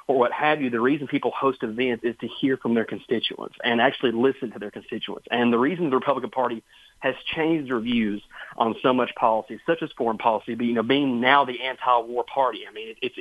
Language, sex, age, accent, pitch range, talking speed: English, male, 30-49, American, 115-140 Hz, 225 wpm